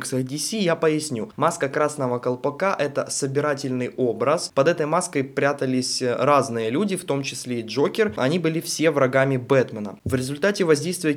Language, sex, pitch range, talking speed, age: Russian, male, 130-165 Hz, 145 wpm, 20-39